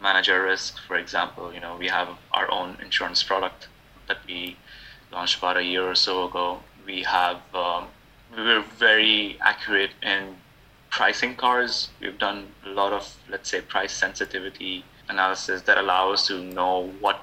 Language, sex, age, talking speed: English, male, 20-39, 165 wpm